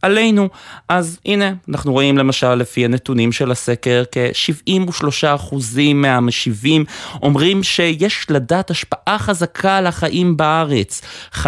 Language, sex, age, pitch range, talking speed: Hebrew, male, 30-49, 115-165 Hz, 105 wpm